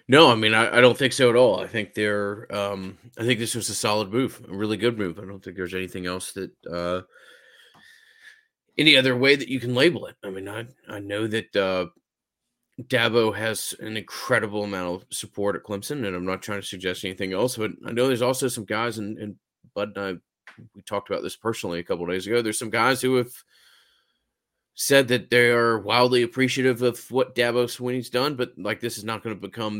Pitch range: 95-120 Hz